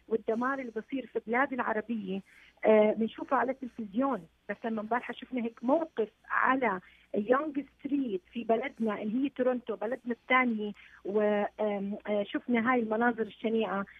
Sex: female